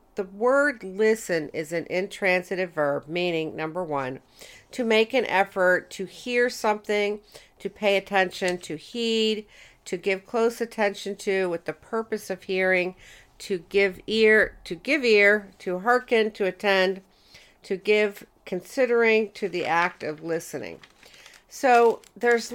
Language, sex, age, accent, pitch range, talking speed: English, female, 50-69, American, 170-225 Hz, 140 wpm